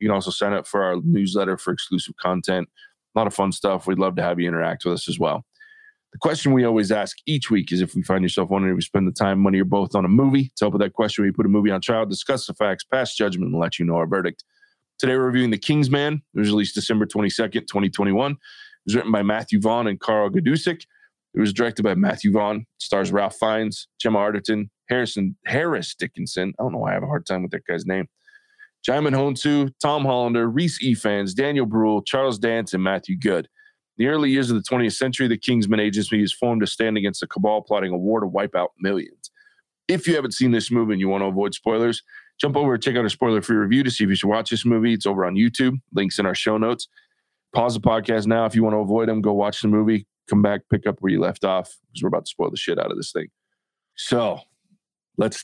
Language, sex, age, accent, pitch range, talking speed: English, male, 20-39, American, 100-135 Hz, 250 wpm